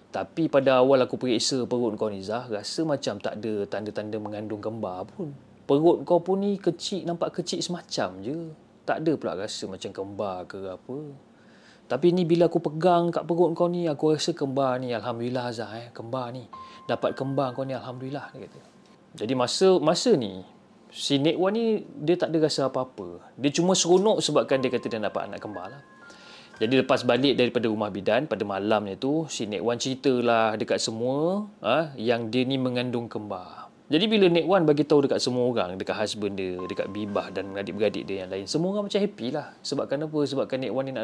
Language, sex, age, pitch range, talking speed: Malay, male, 30-49, 115-170 Hz, 190 wpm